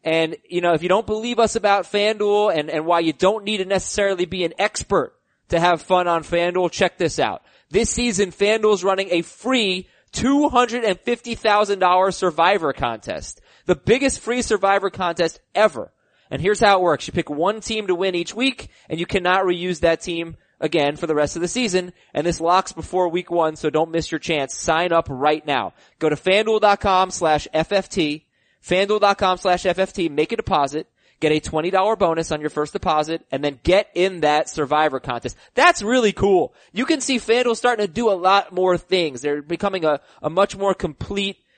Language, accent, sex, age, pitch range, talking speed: English, American, male, 20-39, 150-200 Hz, 190 wpm